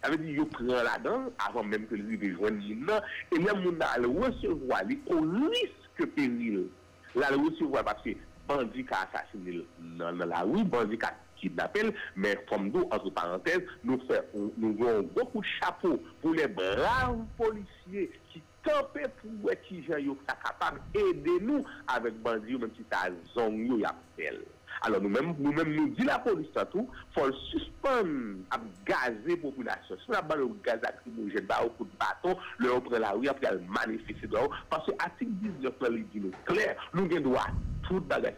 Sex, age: male, 60-79